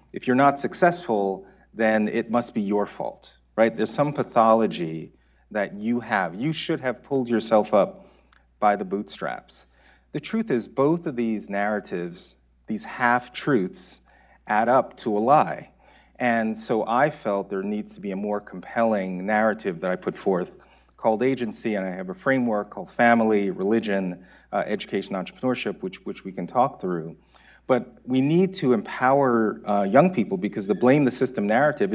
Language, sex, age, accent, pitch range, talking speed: English, male, 40-59, American, 95-135 Hz, 170 wpm